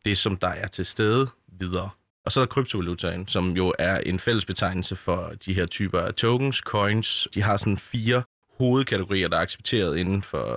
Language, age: Danish, 20-39